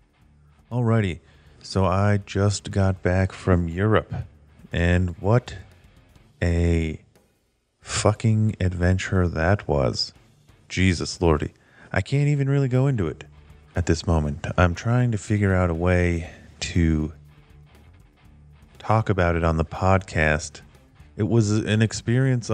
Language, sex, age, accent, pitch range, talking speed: English, male, 30-49, American, 80-100 Hz, 120 wpm